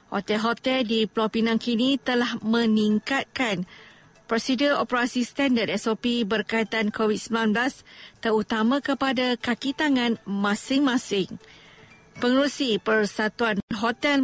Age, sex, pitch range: 50-69, female, 215-250 Hz